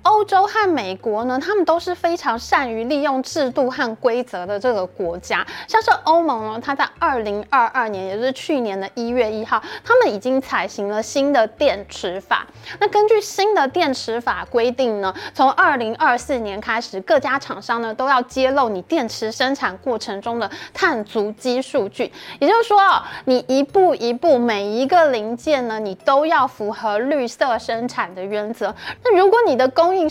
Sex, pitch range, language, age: female, 225-315 Hz, Chinese, 20-39